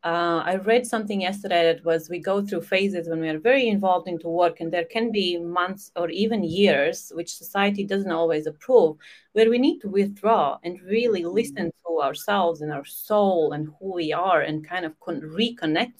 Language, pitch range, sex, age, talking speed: English, 160-200 Hz, female, 30-49, 200 wpm